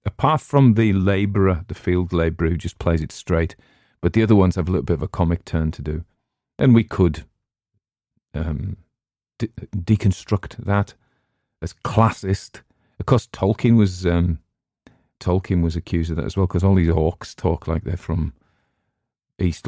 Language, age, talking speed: English, 40-59, 160 wpm